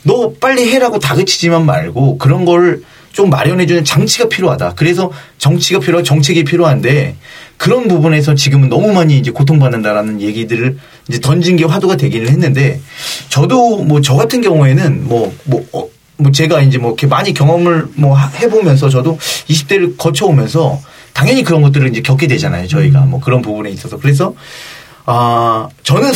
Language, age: Korean, 30-49